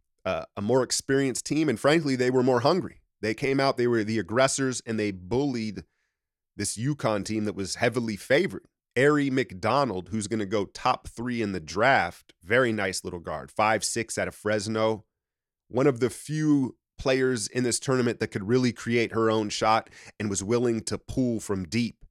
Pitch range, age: 105-130 Hz, 30-49